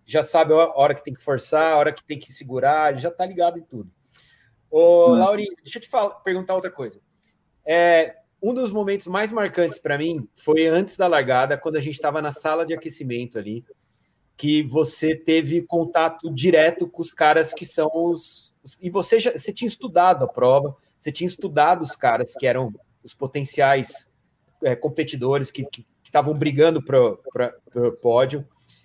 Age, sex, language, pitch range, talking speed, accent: 30-49, male, Portuguese, 150-200 Hz, 175 wpm, Brazilian